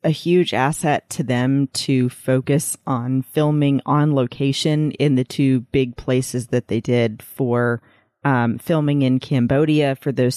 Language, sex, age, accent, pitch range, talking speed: English, female, 30-49, American, 120-145 Hz, 150 wpm